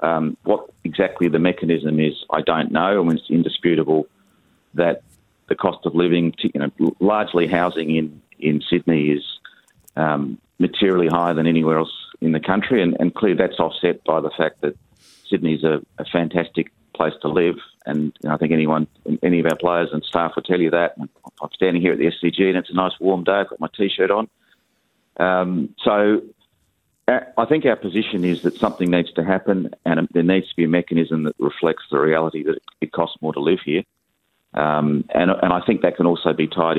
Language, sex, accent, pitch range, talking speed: English, male, Australian, 75-90 Hz, 205 wpm